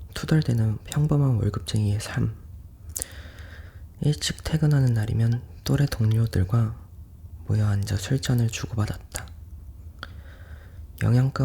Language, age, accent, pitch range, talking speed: Spanish, 20-39, Korean, 85-115 Hz, 75 wpm